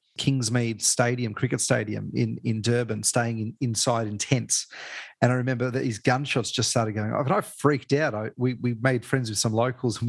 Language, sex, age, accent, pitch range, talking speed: English, male, 30-49, Australian, 115-130 Hz, 210 wpm